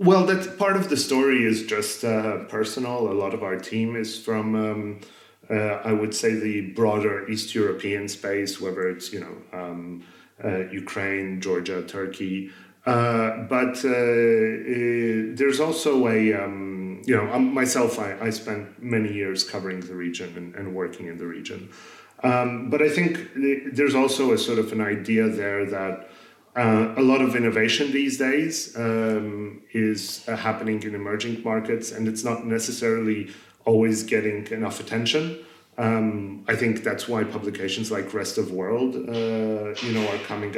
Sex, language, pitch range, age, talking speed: male, English, 105-120 Hz, 30-49, 165 wpm